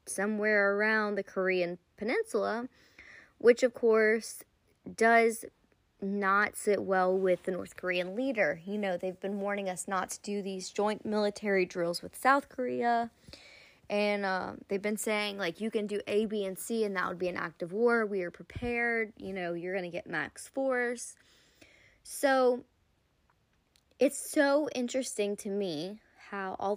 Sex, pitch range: female, 185-215 Hz